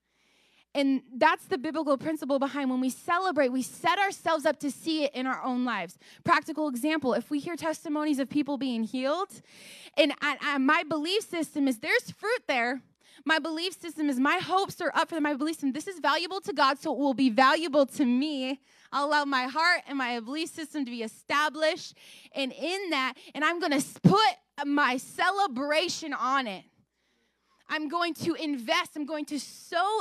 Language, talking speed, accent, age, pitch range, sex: English, 190 wpm, American, 20-39, 260-320 Hz, female